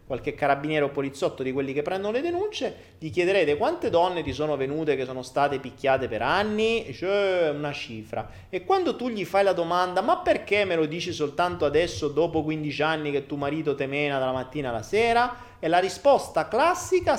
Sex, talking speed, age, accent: male, 190 wpm, 30-49, native